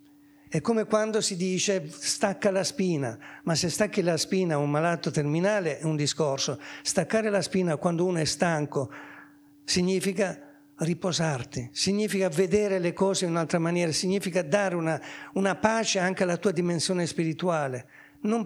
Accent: native